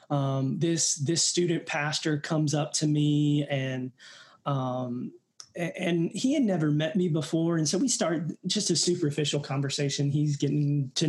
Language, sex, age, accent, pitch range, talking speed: English, male, 20-39, American, 140-160 Hz, 155 wpm